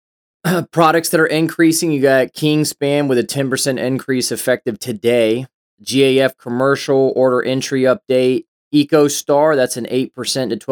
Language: English